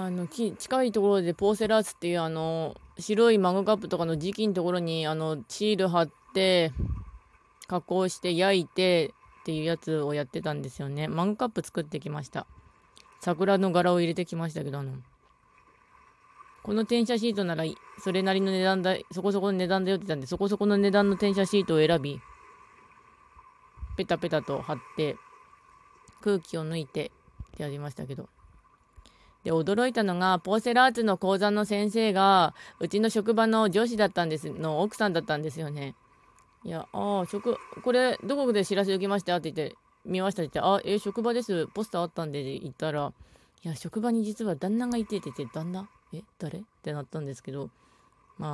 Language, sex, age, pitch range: Japanese, female, 20-39, 155-205 Hz